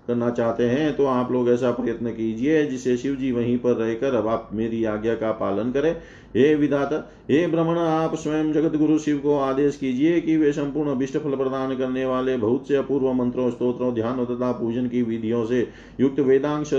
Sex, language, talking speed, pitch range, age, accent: male, Hindi, 80 wpm, 115-135 Hz, 40-59, native